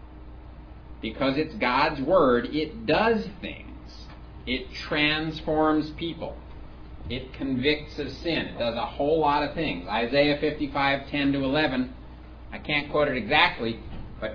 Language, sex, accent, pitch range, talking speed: English, male, American, 90-145 Hz, 140 wpm